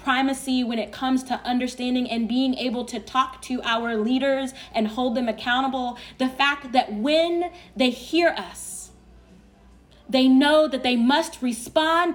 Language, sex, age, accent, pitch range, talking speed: English, female, 20-39, American, 205-255 Hz, 155 wpm